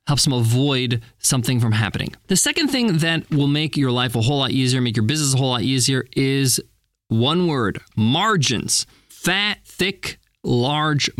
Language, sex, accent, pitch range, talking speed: English, male, American, 130-195 Hz, 170 wpm